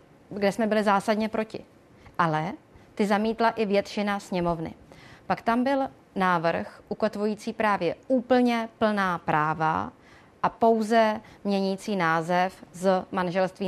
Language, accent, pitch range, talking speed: Czech, native, 180-220 Hz, 115 wpm